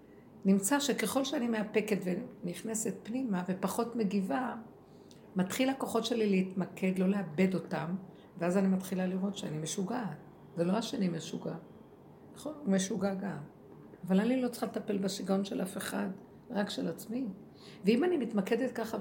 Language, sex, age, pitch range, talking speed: Hebrew, female, 50-69, 180-225 Hz, 140 wpm